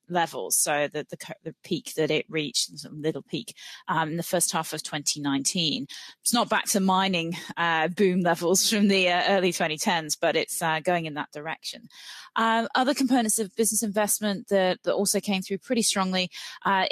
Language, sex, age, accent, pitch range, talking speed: English, female, 30-49, British, 155-190 Hz, 190 wpm